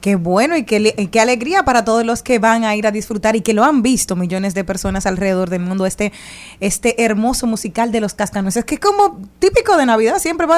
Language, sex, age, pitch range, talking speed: Spanish, female, 20-39, 195-235 Hz, 235 wpm